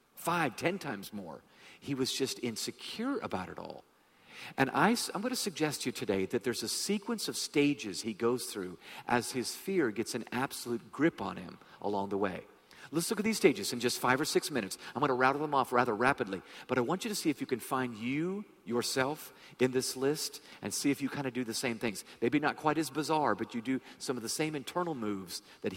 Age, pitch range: 50-69, 125-180 Hz